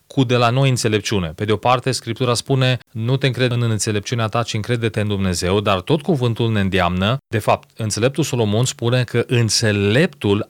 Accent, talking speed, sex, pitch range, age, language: native, 190 wpm, male, 110-135 Hz, 30-49, Romanian